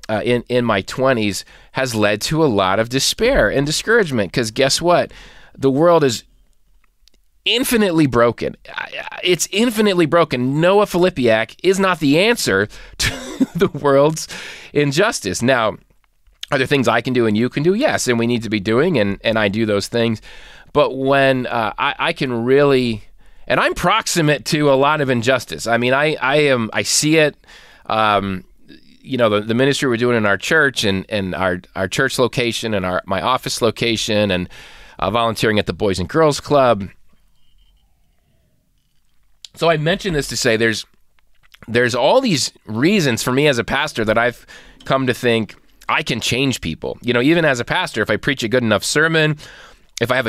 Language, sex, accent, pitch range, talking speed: English, male, American, 110-150 Hz, 185 wpm